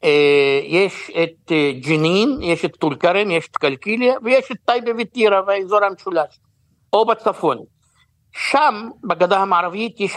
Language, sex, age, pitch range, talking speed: Hebrew, male, 60-79, 175-235 Hz, 130 wpm